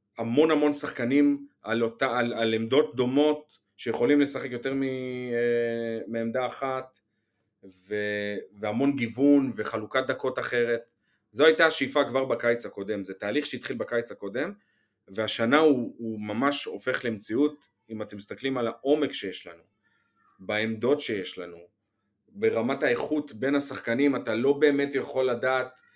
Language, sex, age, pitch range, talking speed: Hebrew, male, 30-49, 105-135 Hz, 130 wpm